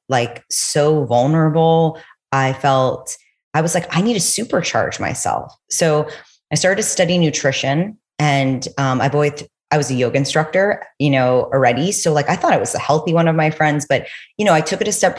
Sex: female